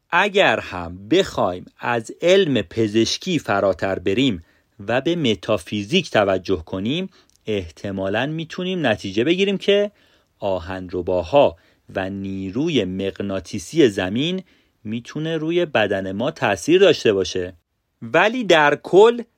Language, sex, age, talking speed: Persian, male, 40-59, 100 wpm